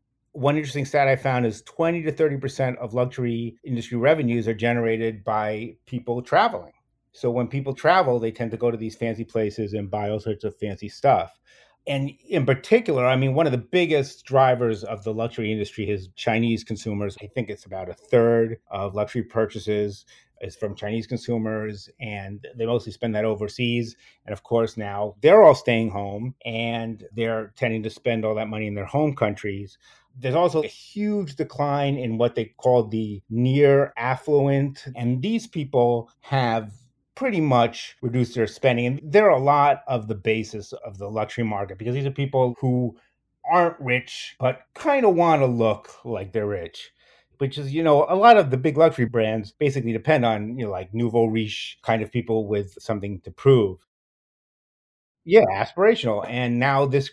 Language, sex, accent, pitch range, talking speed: English, male, American, 110-135 Hz, 180 wpm